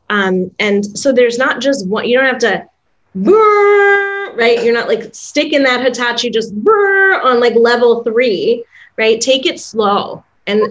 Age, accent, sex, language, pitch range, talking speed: 20-39, American, female, English, 195-245 Hz, 155 wpm